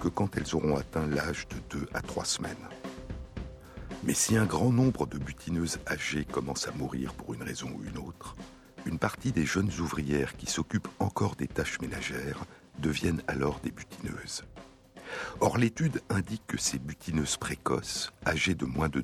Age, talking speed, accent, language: 60-79, 170 wpm, French, French